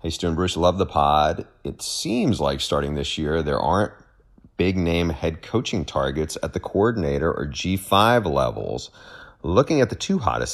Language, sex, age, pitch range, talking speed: English, male, 30-49, 75-90 Hz, 170 wpm